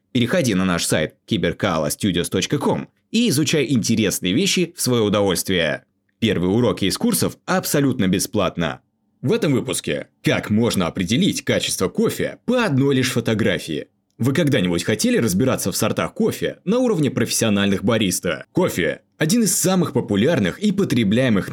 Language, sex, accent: Russian, male, native